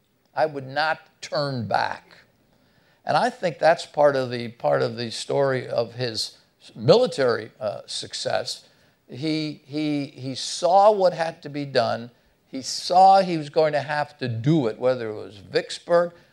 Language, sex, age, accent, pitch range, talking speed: English, male, 60-79, American, 125-160 Hz, 160 wpm